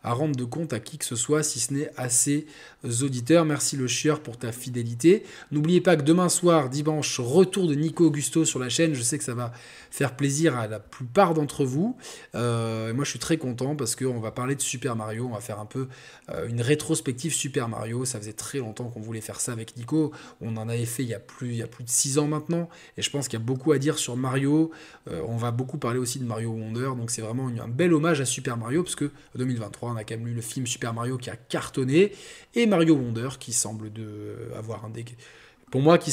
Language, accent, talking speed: French, French, 250 wpm